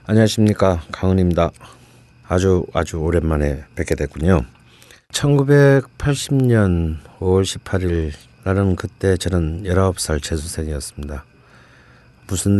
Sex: male